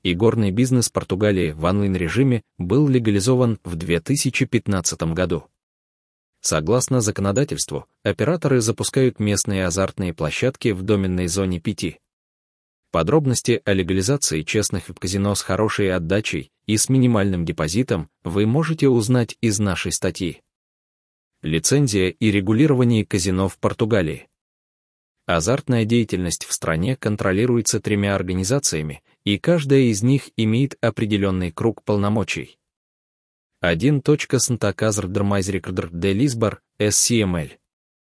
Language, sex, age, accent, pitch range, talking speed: Ukrainian, male, 20-39, native, 95-120 Hz, 105 wpm